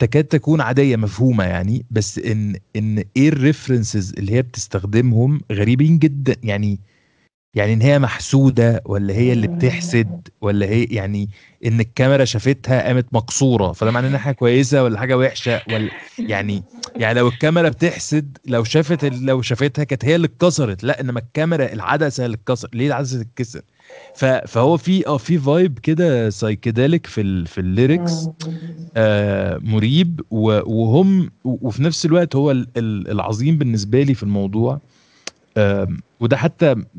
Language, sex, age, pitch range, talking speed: Arabic, male, 20-39, 105-140 Hz, 140 wpm